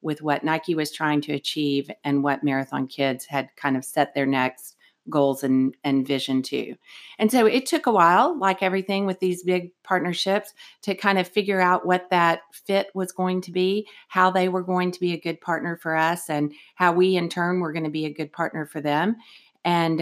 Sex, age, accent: female, 40-59, American